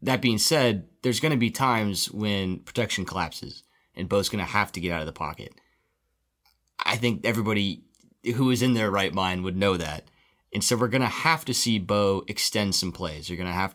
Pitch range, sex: 90-115 Hz, male